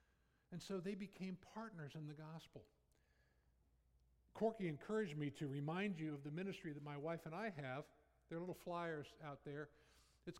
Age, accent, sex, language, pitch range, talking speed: 60-79, American, male, English, 125-170 Hz, 175 wpm